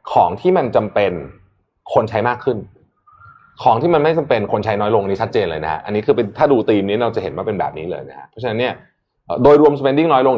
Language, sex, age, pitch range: Thai, male, 20-39, 100-150 Hz